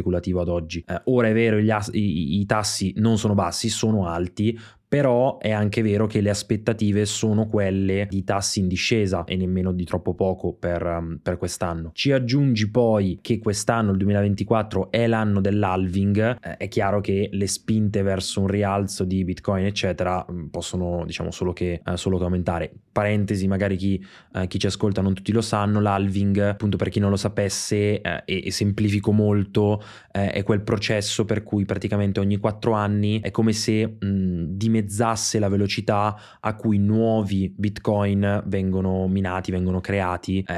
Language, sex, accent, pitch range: Italian, male, native, 90-105 Hz